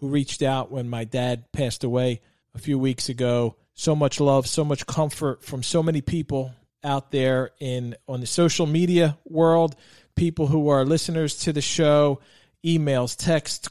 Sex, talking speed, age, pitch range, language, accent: male, 170 wpm, 40-59, 125-155 Hz, English, American